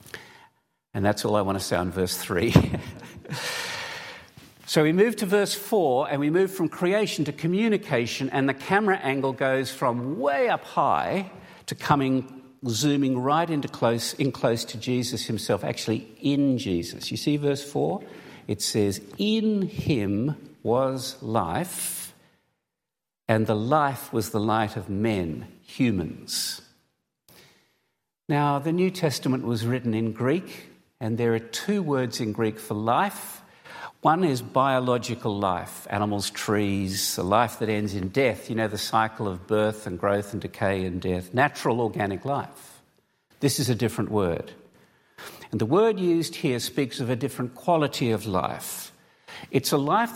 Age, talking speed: 50-69, 155 wpm